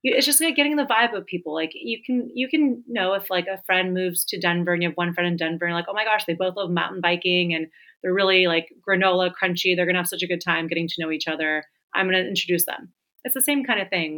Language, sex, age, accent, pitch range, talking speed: English, female, 30-49, American, 165-200 Hz, 290 wpm